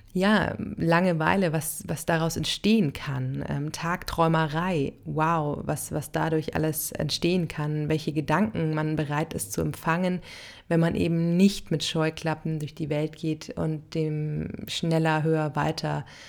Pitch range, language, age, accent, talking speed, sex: 150-165 Hz, German, 30-49, German, 140 wpm, female